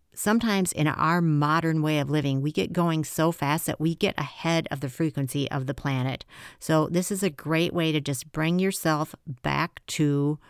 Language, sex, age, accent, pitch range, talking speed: English, female, 50-69, American, 140-165 Hz, 195 wpm